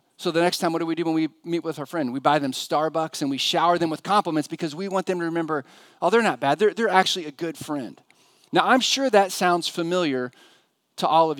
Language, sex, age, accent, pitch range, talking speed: English, male, 40-59, American, 145-190 Hz, 260 wpm